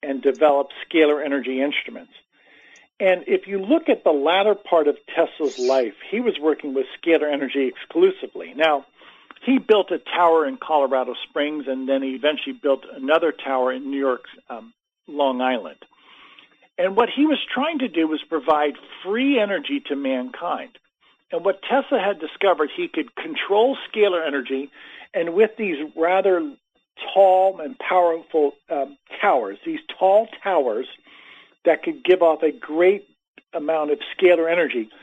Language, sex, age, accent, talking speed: English, male, 50-69, American, 150 wpm